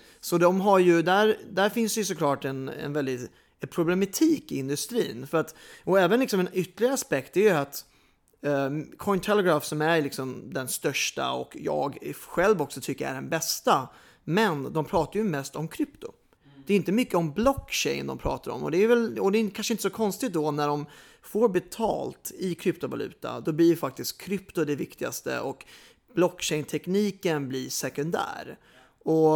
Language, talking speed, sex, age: English, 185 wpm, male, 30-49